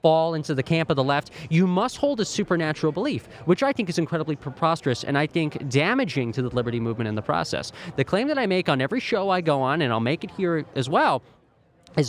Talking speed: 245 wpm